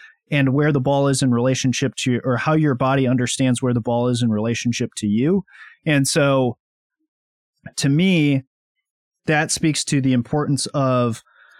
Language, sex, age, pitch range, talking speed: English, male, 30-49, 125-155 Hz, 160 wpm